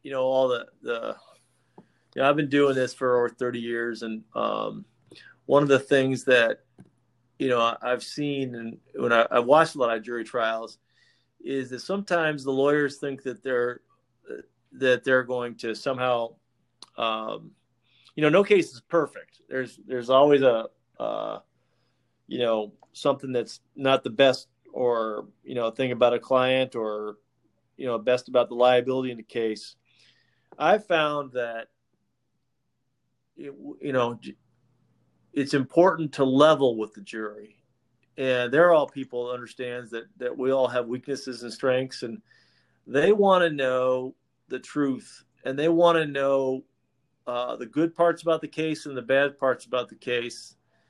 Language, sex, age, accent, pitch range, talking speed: English, male, 40-59, American, 120-140 Hz, 160 wpm